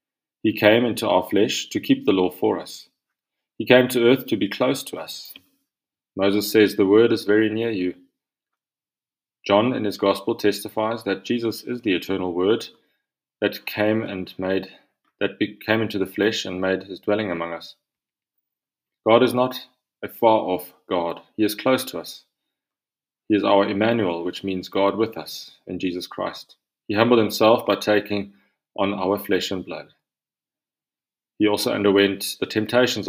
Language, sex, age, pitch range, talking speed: English, male, 30-49, 95-115 Hz, 170 wpm